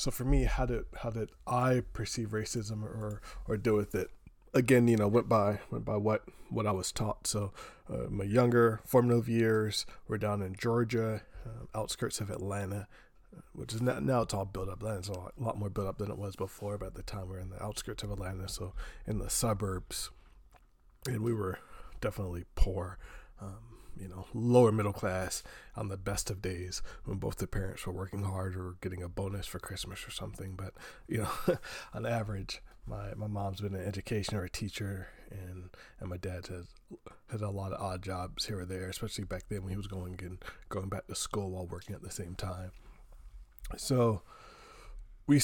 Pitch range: 95-115 Hz